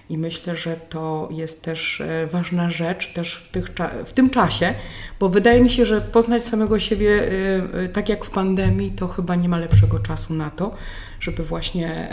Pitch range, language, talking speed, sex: 170-210 Hz, Polish, 180 wpm, female